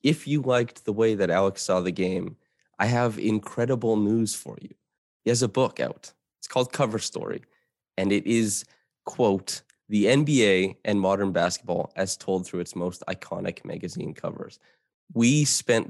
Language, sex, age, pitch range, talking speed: English, male, 20-39, 90-110 Hz, 165 wpm